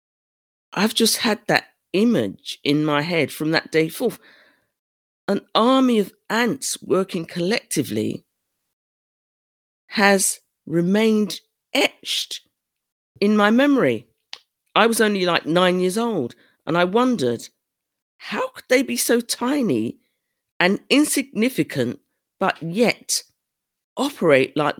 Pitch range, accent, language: 135-195 Hz, British, English